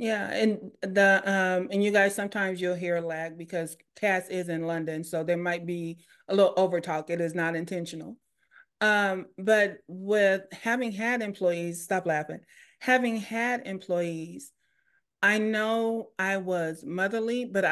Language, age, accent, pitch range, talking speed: English, 30-49, American, 185-250 Hz, 150 wpm